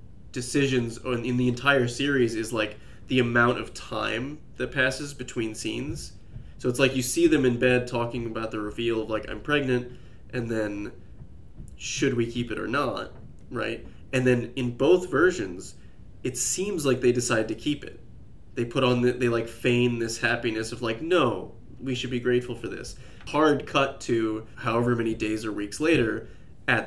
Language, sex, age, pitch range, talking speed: English, male, 20-39, 110-130 Hz, 180 wpm